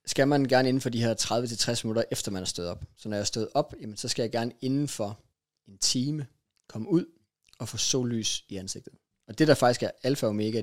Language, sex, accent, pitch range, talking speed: Danish, male, native, 105-120 Hz, 250 wpm